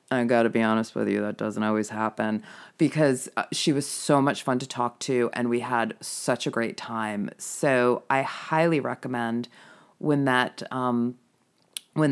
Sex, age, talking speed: female, 30-49, 175 wpm